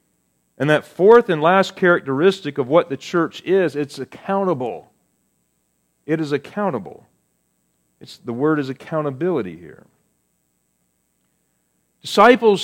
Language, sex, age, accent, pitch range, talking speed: English, male, 40-59, American, 120-180 Hz, 110 wpm